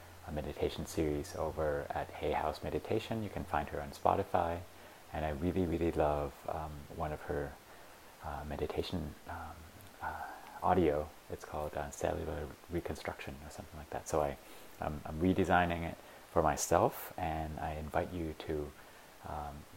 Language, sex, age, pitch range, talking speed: English, male, 30-49, 75-90 Hz, 155 wpm